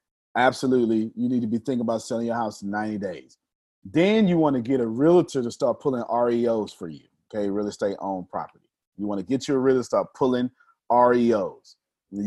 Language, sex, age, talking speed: English, male, 30-49, 200 wpm